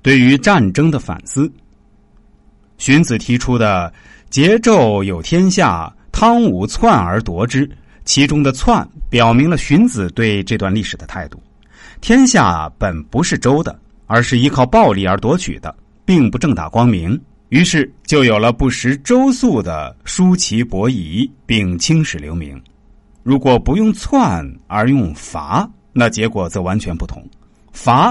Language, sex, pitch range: Chinese, male, 95-155 Hz